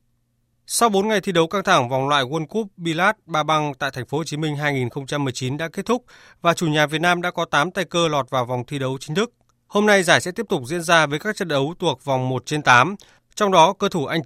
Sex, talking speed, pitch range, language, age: male, 255 wpm, 130-180 Hz, Vietnamese, 20-39